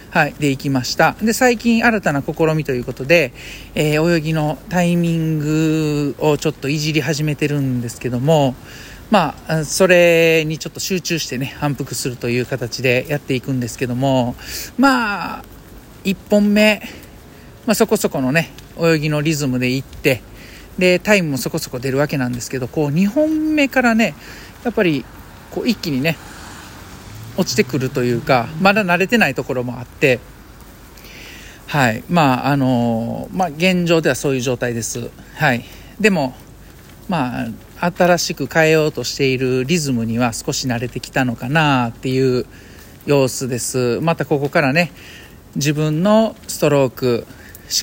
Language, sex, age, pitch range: Japanese, male, 50-69, 130-175 Hz